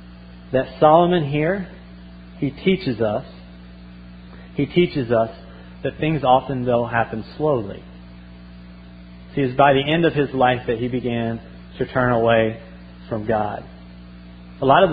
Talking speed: 135 wpm